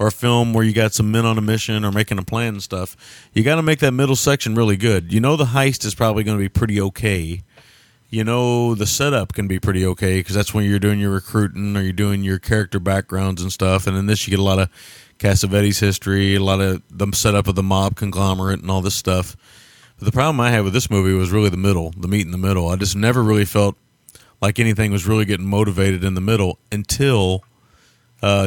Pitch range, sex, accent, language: 95-115 Hz, male, American, English